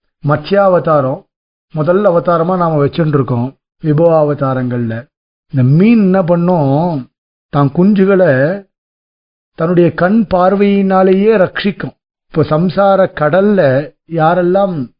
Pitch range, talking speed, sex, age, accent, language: 155-200 Hz, 85 wpm, male, 50-69, native, Tamil